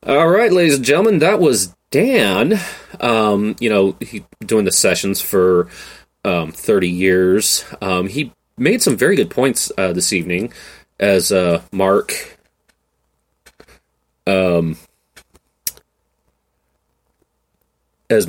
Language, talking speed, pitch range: English, 110 wpm, 85-105 Hz